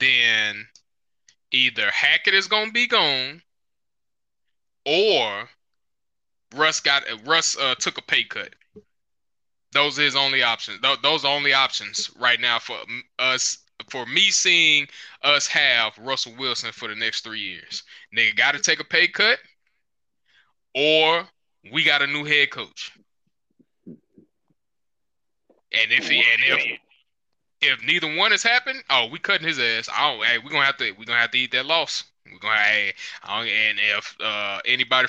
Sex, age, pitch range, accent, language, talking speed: male, 20-39, 125-160 Hz, American, English, 150 wpm